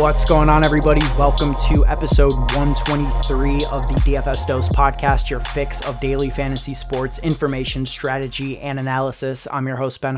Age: 20-39